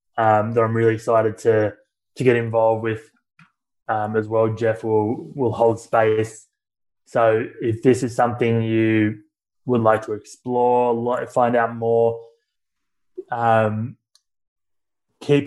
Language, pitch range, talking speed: English, 110-120 Hz, 130 wpm